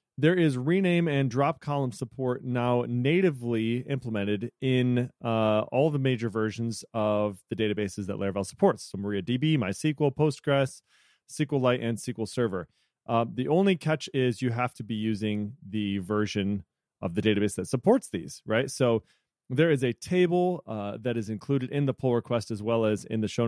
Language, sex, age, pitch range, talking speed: English, male, 30-49, 110-140 Hz, 175 wpm